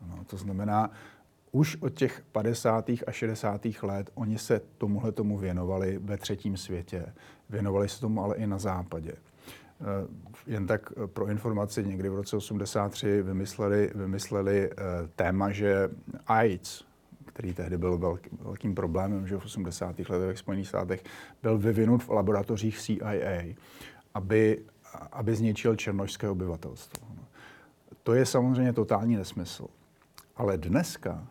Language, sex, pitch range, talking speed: Slovak, male, 100-115 Hz, 135 wpm